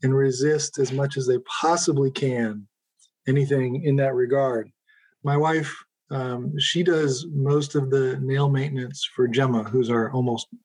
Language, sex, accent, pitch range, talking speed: English, male, American, 125-145 Hz, 150 wpm